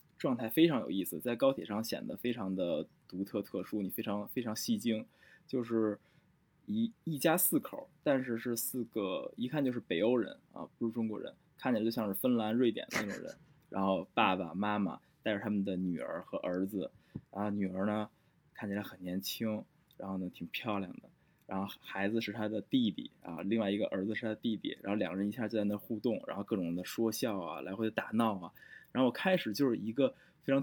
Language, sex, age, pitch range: Chinese, male, 20-39, 105-155 Hz